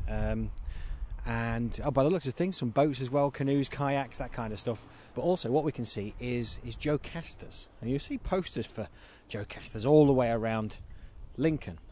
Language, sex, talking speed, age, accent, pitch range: English, male, 200 wpm, 30-49, British, 100-140 Hz